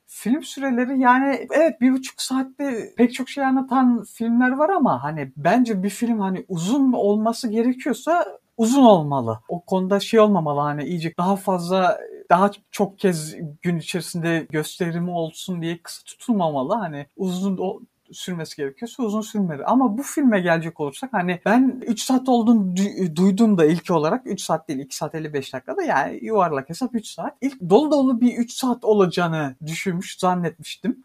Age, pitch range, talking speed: 50-69, 180-250 Hz, 165 wpm